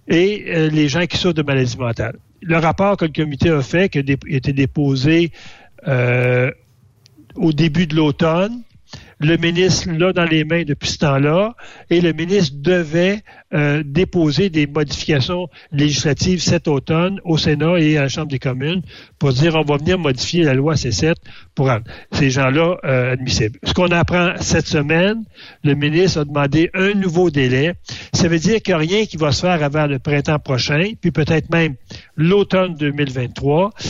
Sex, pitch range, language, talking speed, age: male, 135-170 Hz, French, 180 wpm, 60-79